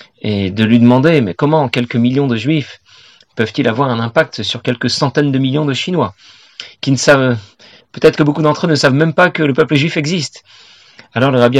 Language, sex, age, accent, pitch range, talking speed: French, male, 40-59, French, 120-150 Hz, 210 wpm